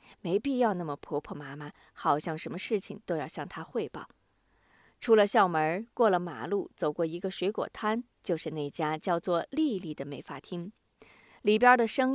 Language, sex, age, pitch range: Chinese, female, 20-39, 165-230 Hz